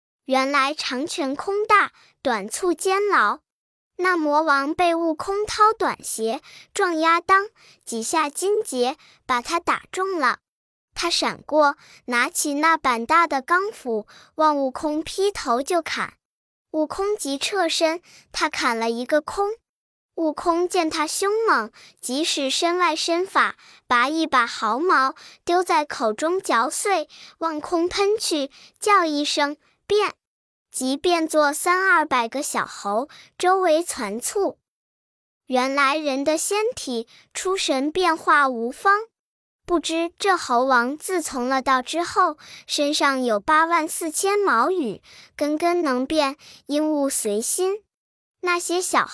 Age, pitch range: 10-29, 275-365 Hz